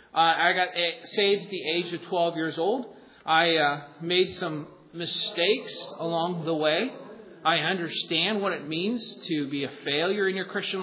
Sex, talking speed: male, 170 wpm